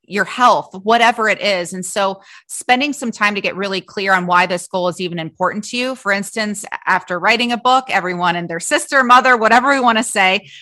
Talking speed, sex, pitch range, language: 220 wpm, female, 185-225 Hz, English